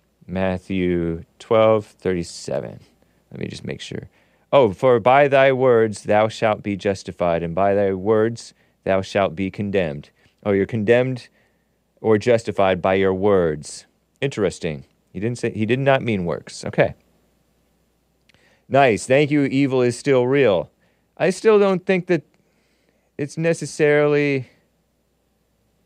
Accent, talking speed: American, 135 wpm